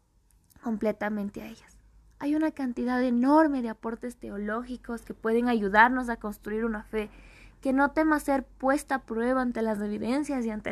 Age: 20-39